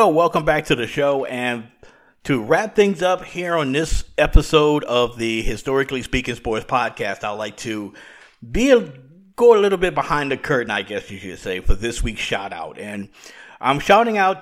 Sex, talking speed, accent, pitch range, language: male, 185 wpm, American, 115-140 Hz, English